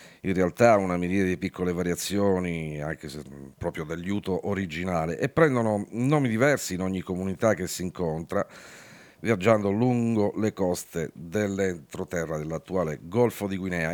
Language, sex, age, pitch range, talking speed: Italian, male, 50-69, 80-105 Hz, 135 wpm